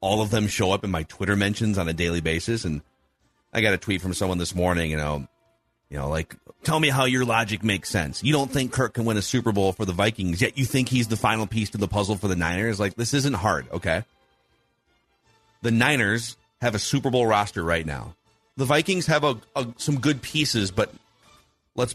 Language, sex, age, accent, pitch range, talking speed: English, male, 30-49, American, 95-135 Hz, 225 wpm